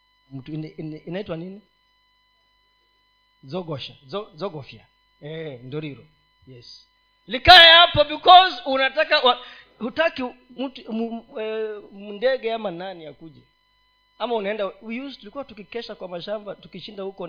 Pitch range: 165-275 Hz